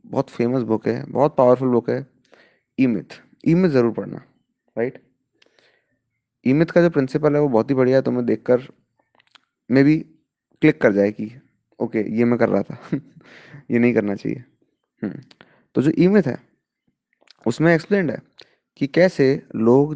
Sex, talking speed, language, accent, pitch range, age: male, 160 wpm, Hindi, native, 125-150 Hz, 20-39